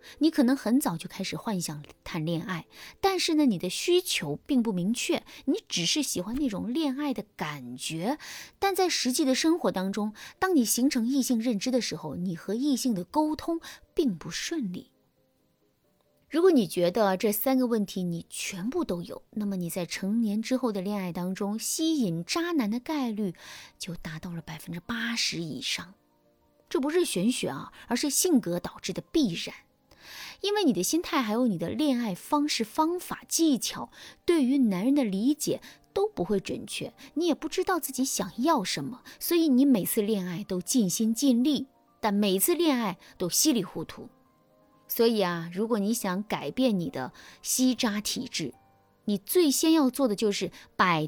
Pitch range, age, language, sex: 190-290 Hz, 30-49, Chinese, female